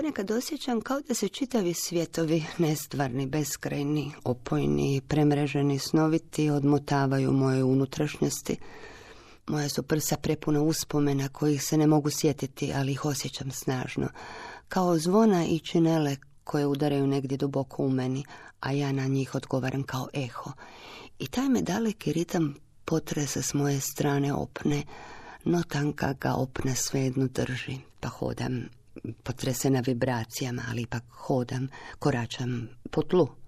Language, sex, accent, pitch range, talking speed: Croatian, female, native, 130-160 Hz, 125 wpm